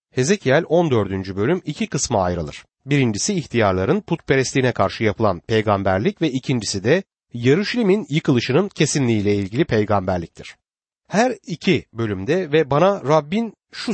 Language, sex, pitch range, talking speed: Turkish, male, 110-180 Hz, 115 wpm